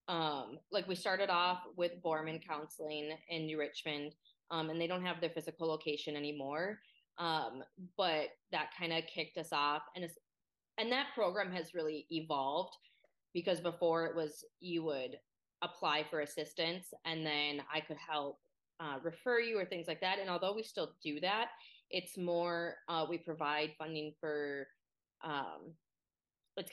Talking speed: 160 wpm